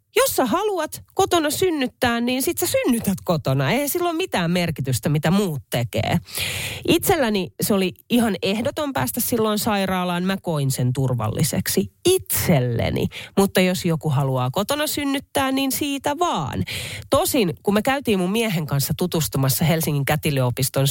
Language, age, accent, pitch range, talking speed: Finnish, 30-49, native, 135-215 Hz, 140 wpm